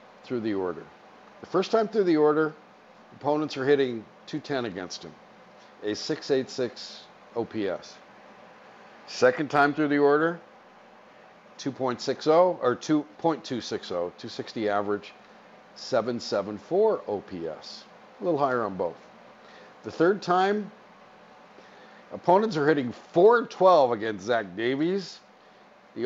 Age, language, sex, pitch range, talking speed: 50-69, English, male, 110-160 Hz, 105 wpm